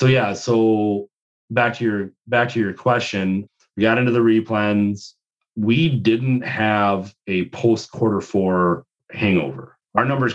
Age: 30-49